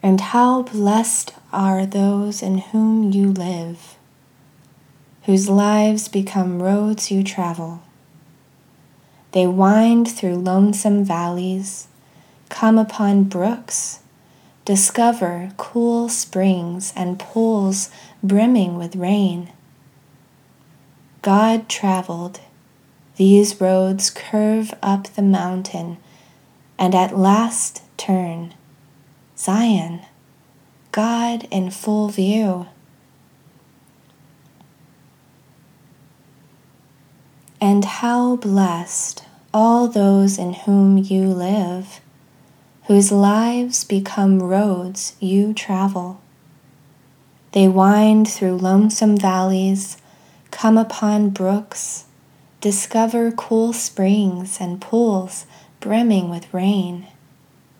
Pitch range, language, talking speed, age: 160-205 Hz, English, 80 wpm, 20-39